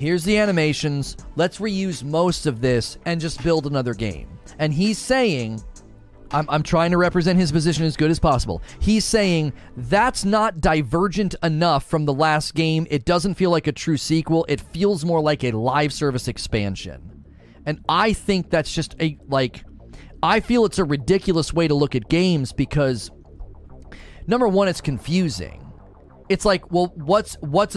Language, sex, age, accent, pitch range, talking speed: English, male, 30-49, American, 140-190 Hz, 170 wpm